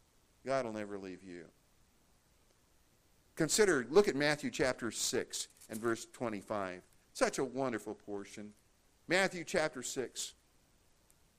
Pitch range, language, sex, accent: 110-150 Hz, English, male, American